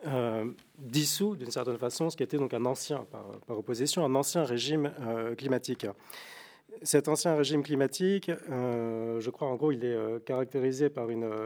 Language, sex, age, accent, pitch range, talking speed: French, male, 40-59, French, 125-155 Hz, 180 wpm